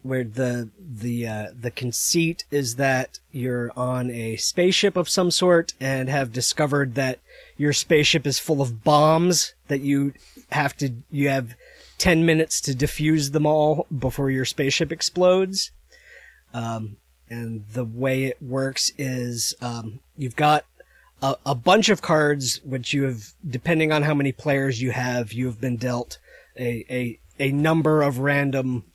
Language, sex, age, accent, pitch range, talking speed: English, male, 30-49, American, 115-145 Hz, 160 wpm